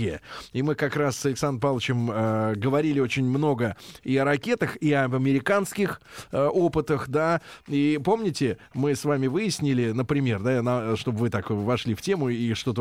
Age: 20-39